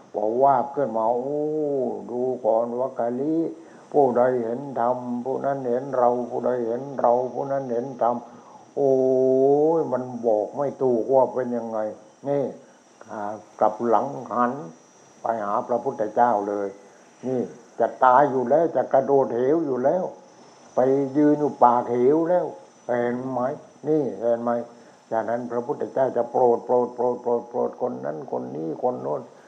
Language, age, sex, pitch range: English, 60-79, male, 115-135 Hz